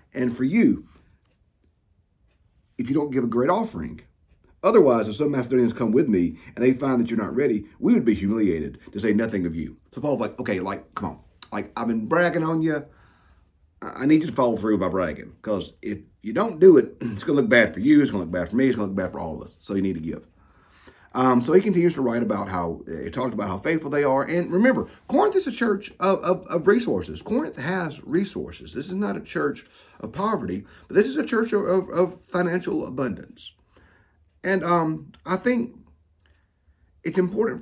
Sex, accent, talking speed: male, American, 220 wpm